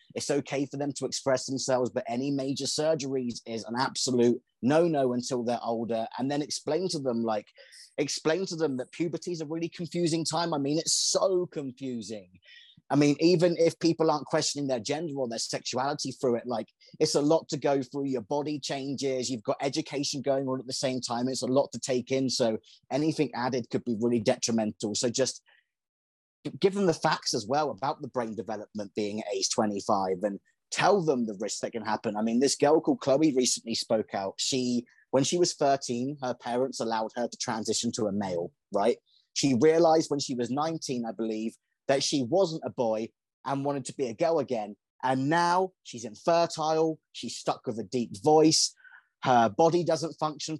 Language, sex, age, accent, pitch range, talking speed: English, male, 30-49, British, 120-155 Hz, 200 wpm